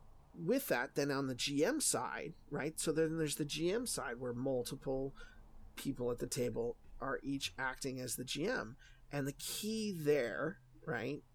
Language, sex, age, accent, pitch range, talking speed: English, male, 30-49, American, 125-145 Hz, 165 wpm